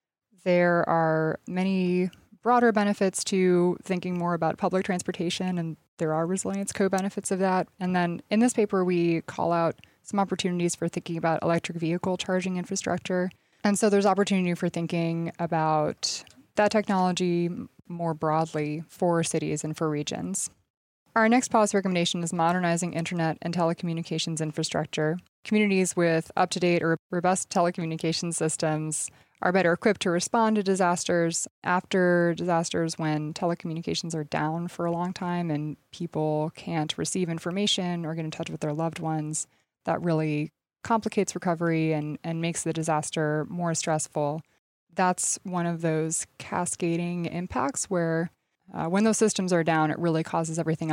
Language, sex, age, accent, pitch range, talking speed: English, female, 20-39, American, 160-185 Hz, 150 wpm